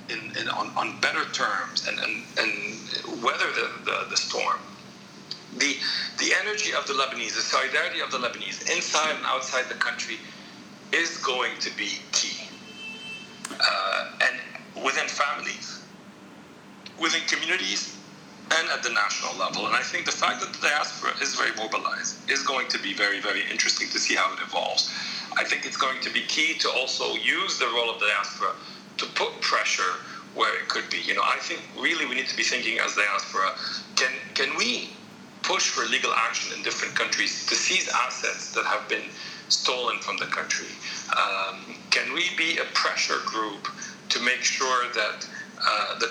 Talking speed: 175 wpm